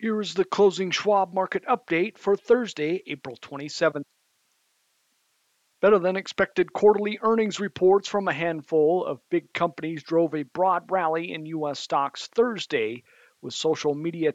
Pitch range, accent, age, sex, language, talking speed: 145-185 Hz, American, 50-69, male, English, 140 wpm